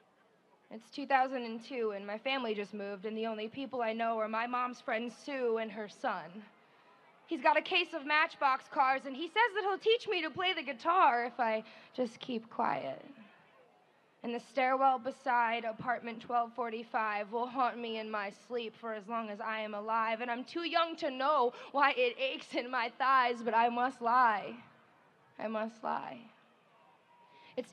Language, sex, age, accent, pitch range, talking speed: English, female, 20-39, American, 225-275 Hz, 180 wpm